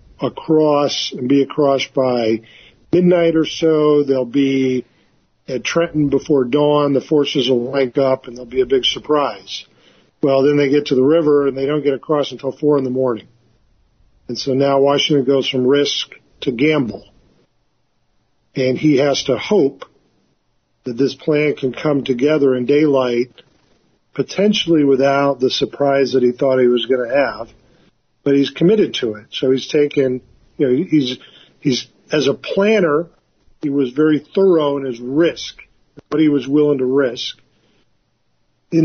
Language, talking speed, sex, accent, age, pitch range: English, 160 wpm, male, American, 50-69, 130-150 Hz